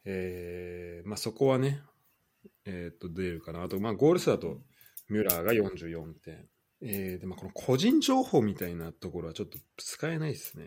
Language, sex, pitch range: Japanese, male, 85-130 Hz